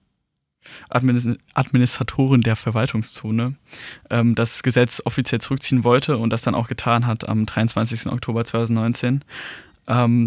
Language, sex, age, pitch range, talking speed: German, male, 20-39, 115-125 Hz, 110 wpm